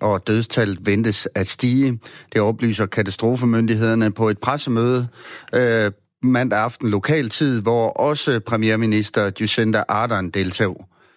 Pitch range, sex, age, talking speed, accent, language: 105-125 Hz, male, 30-49, 120 wpm, native, Danish